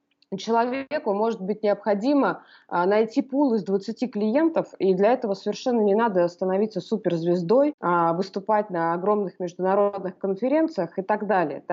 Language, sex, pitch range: Russian, female, 180-255 Hz